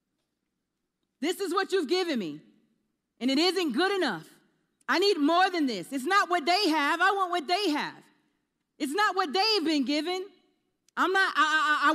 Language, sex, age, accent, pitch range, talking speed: English, female, 40-59, American, 300-390 Hz, 185 wpm